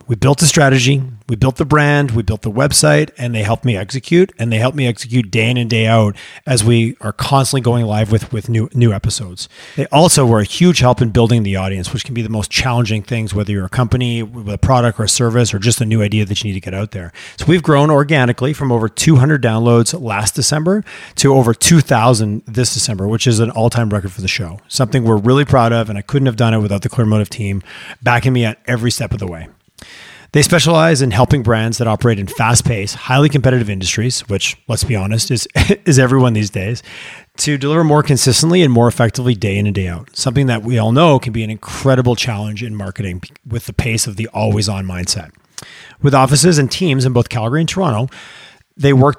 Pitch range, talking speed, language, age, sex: 110-135 Hz, 230 wpm, English, 30-49, male